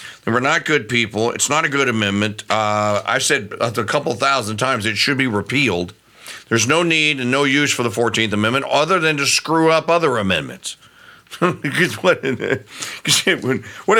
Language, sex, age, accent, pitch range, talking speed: English, male, 50-69, American, 110-155 Hz, 165 wpm